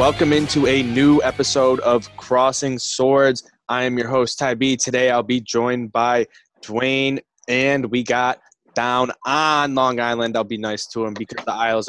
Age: 20-39